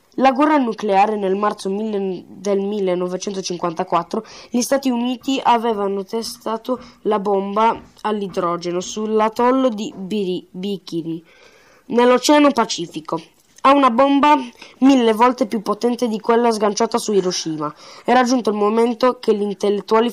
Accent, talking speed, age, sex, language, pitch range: native, 115 wpm, 20-39, female, Italian, 190-235 Hz